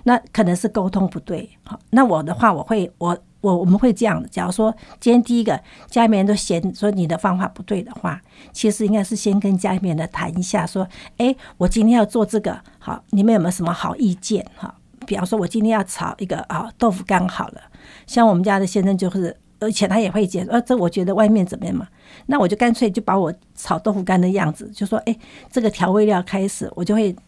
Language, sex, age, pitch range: Chinese, female, 50-69, 185-225 Hz